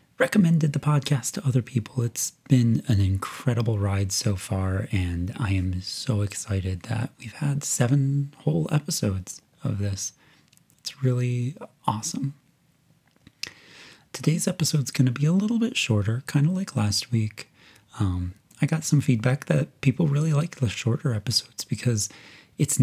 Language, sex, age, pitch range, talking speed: English, male, 30-49, 105-150 Hz, 150 wpm